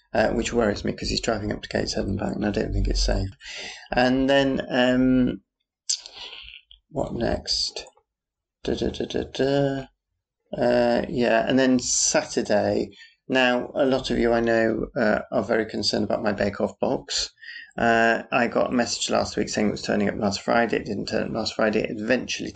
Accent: British